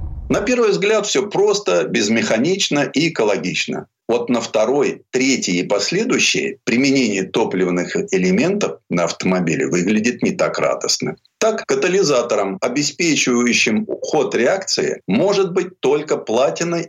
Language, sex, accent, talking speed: Russian, male, native, 115 wpm